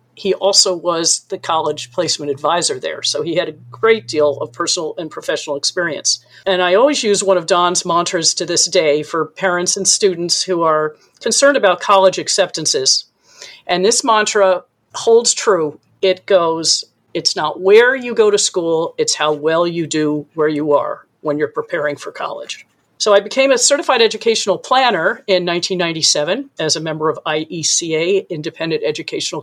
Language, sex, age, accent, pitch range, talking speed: English, female, 50-69, American, 160-205 Hz, 170 wpm